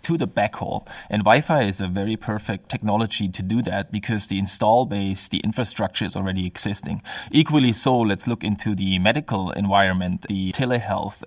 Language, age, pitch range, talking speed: English, 20-39, 100-115 Hz, 175 wpm